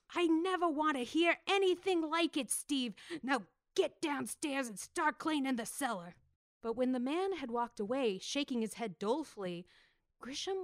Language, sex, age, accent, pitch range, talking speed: English, female, 30-49, American, 195-260 Hz, 165 wpm